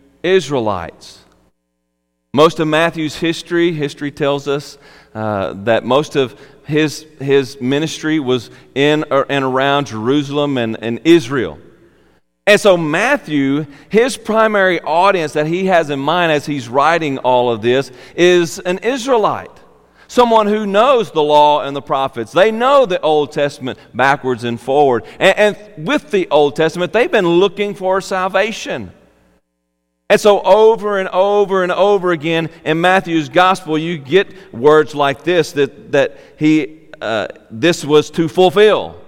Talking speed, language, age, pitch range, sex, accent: 145 wpm, English, 40-59, 135-195 Hz, male, American